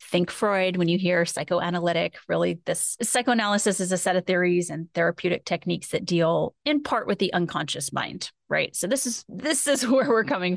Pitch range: 170-195 Hz